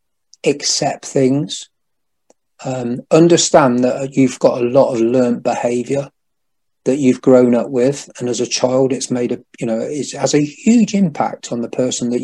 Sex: male